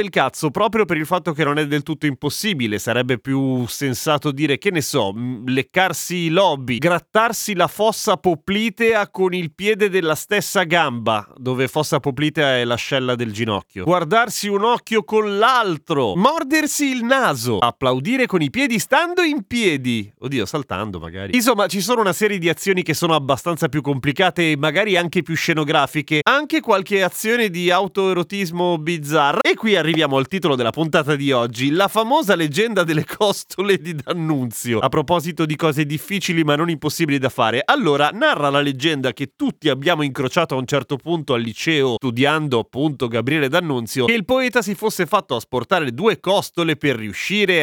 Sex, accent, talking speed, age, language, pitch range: male, native, 170 wpm, 30-49, Italian, 140-195 Hz